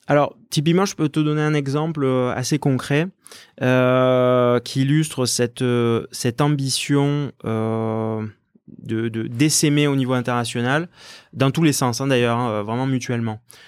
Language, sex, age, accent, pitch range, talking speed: French, male, 20-39, French, 120-150 Hz, 135 wpm